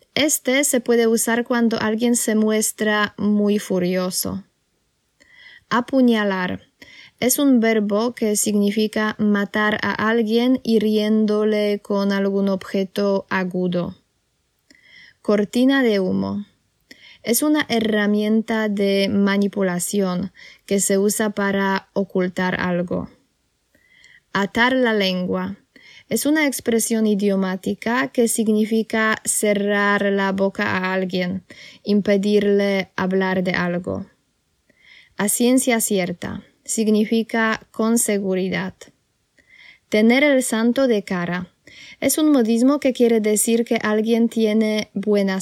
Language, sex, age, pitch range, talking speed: Polish, female, 10-29, 195-230 Hz, 105 wpm